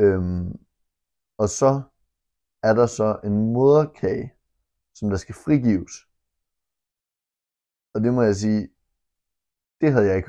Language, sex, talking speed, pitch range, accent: Danish, male, 120 wpm, 90-110 Hz, native